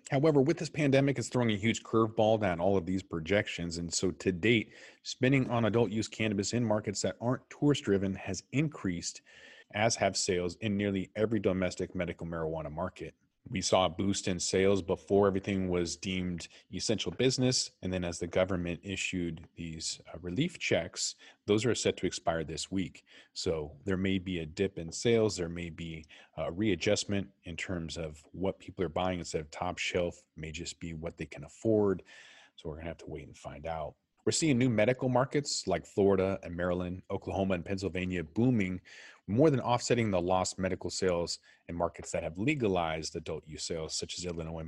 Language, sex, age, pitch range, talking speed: English, male, 30-49, 85-110 Hz, 190 wpm